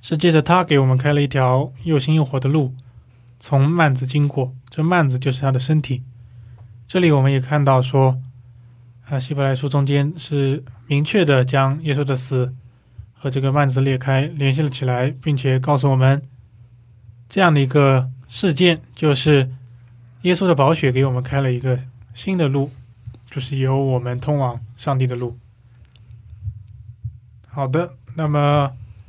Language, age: Korean, 20-39